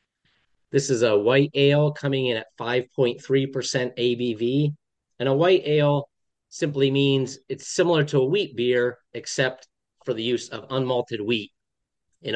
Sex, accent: male, American